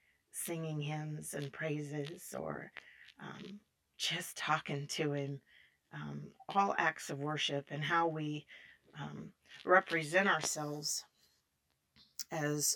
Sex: female